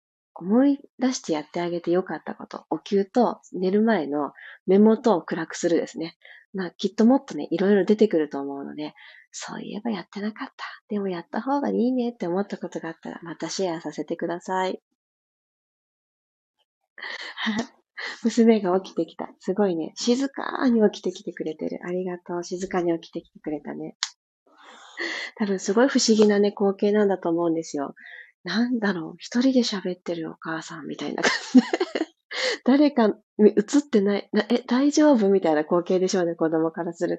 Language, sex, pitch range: Japanese, female, 175-240 Hz